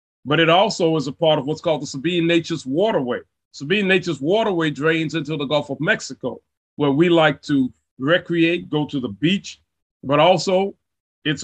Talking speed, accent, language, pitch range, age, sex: 180 wpm, American, English, 140-180 Hz, 30-49, male